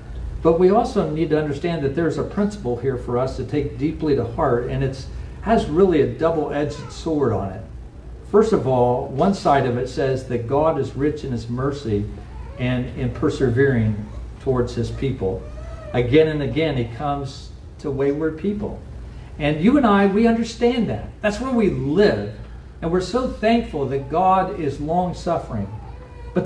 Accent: American